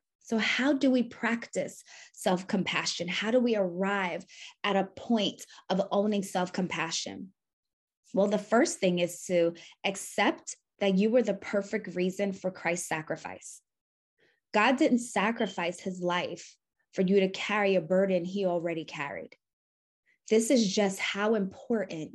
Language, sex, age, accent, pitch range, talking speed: English, female, 20-39, American, 180-225 Hz, 140 wpm